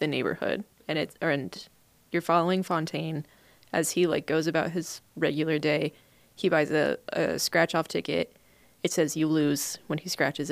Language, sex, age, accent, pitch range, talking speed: English, female, 20-39, American, 155-180 Hz, 170 wpm